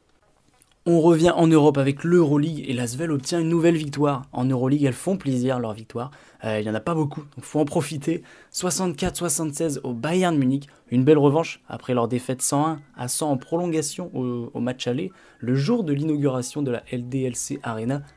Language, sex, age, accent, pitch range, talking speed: French, male, 20-39, French, 125-155 Hz, 190 wpm